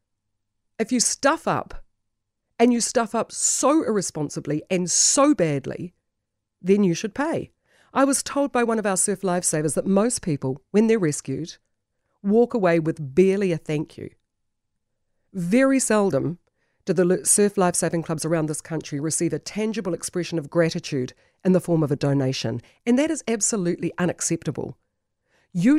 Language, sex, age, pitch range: English, female, 40-59, 150-210 Hz